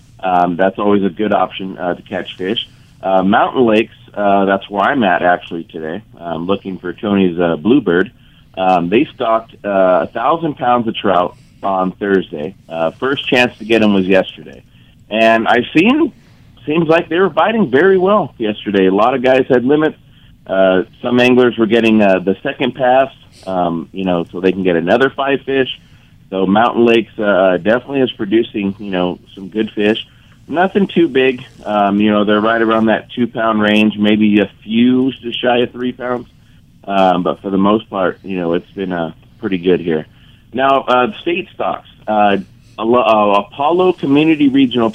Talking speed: 180 wpm